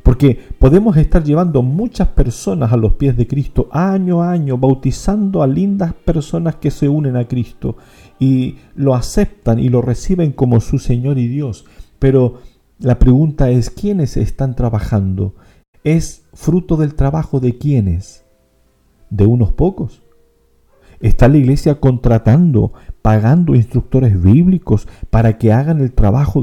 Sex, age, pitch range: male, 50-69, 105-140 Hz